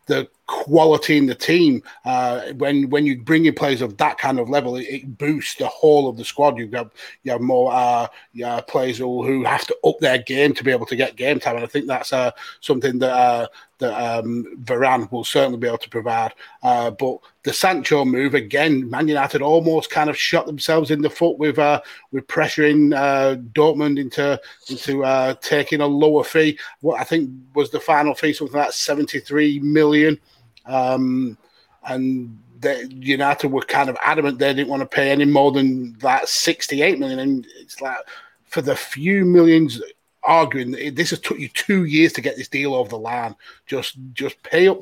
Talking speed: 200 wpm